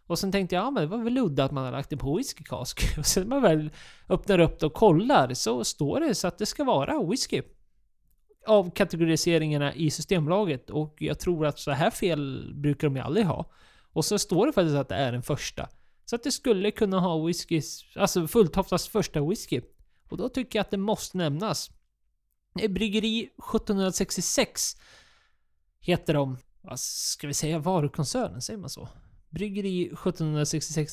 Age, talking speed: 20-39, 180 wpm